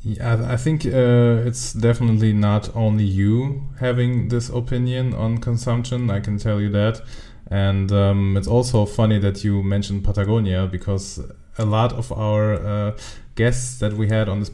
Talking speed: 165 wpm